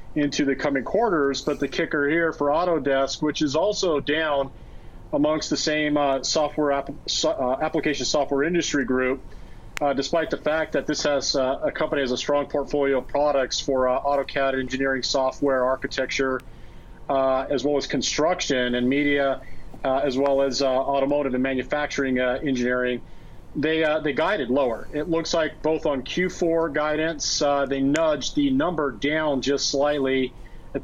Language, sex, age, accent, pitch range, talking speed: English, male, 40-59, American, 135-150 Hz, 165 wpm